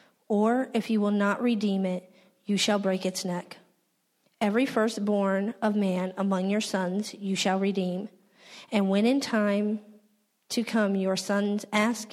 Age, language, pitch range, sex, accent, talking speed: 40-59, English, 190-220 Hz, female, American, 155 wpm